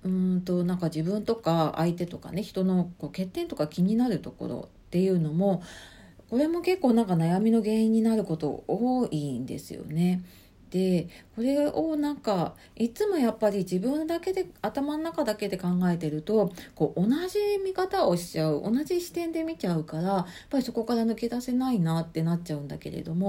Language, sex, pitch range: Japanese, female, 160-235 Hz